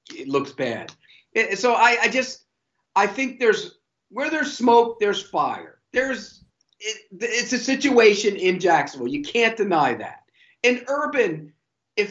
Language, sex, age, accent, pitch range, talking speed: English, male, 50-69, American, 215-300 Hz, 140 wpm